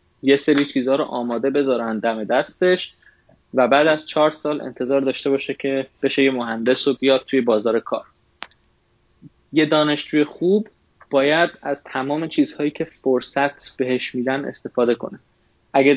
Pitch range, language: 120-150 Hz, Persian